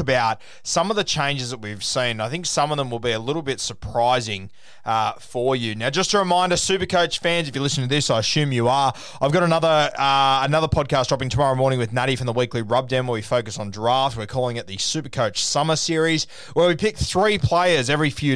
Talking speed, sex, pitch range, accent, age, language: 235 wpm, male, 120-160 Hz, Australian, 20-39, English